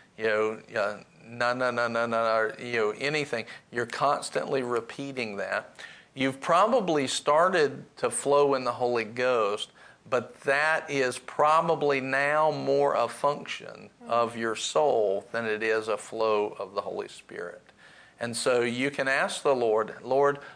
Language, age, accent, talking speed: English, 50-69, American, 150 wpm